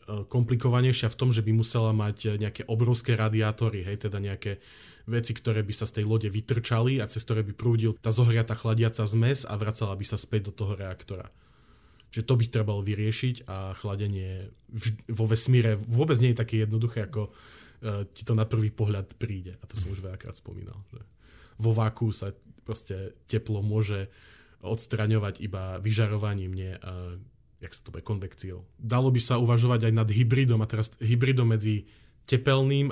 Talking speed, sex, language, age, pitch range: 165 wpm, male, Slovak, 20-39, 105-115 Hz